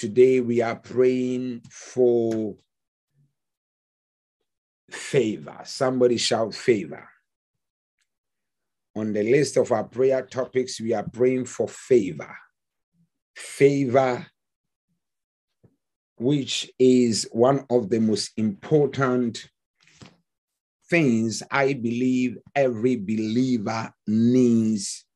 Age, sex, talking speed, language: 50-69, male, 85 wpm, English